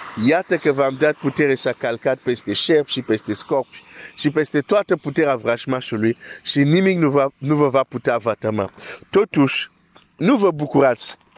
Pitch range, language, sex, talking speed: 125-155 Hz, Romanian, male, 165 wpm